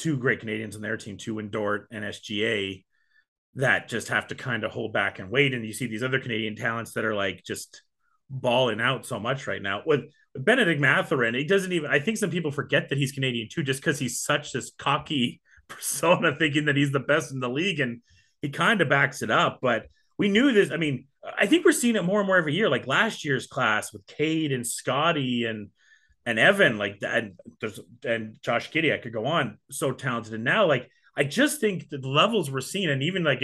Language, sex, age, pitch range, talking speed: English, male, 30-49, 120-165 Hz, 230 wpm